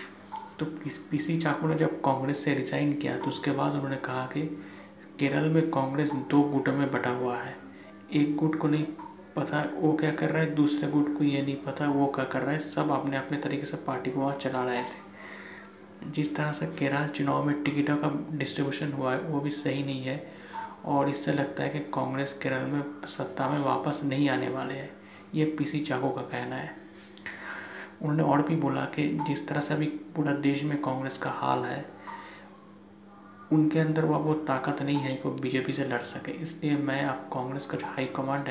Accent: native